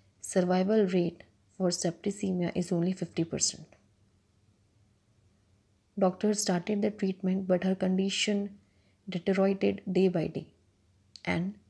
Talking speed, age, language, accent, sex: 105 wpm, 20-39, Hindi, native, female